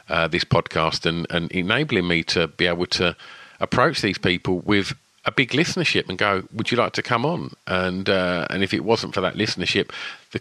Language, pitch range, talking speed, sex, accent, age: English, 95-120 Hz, 210 wpm, male, British, 50-69